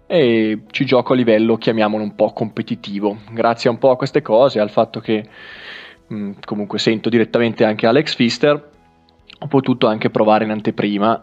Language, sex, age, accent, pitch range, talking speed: Italian, male, 20-39, native, 105-130 Hz, 160 wpm